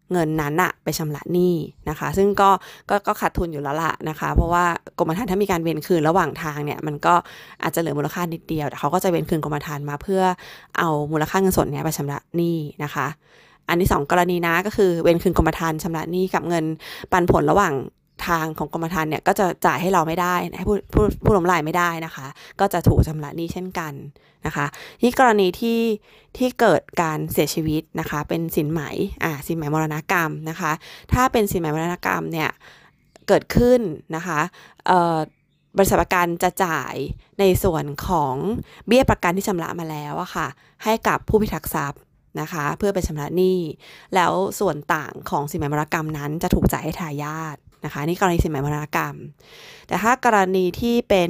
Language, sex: Thai, female